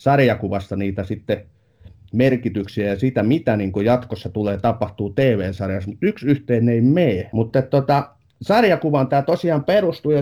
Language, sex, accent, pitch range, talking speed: Finnish, male, native, 105-135 Hz, 135 wpm